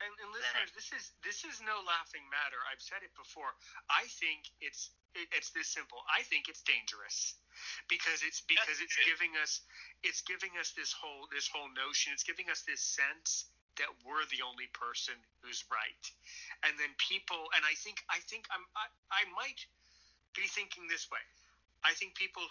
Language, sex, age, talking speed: English, male, 30-49, 185 wpm